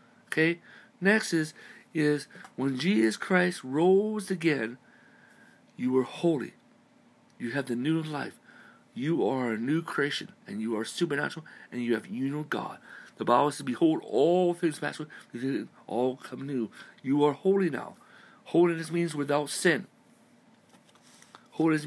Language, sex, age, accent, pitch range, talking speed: English, male, 60-79, American, 135-175 Hz, 145 wpm